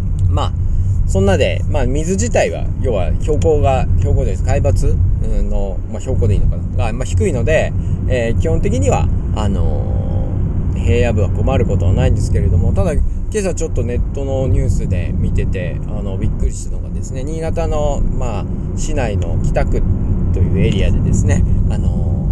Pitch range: 90-95 Hz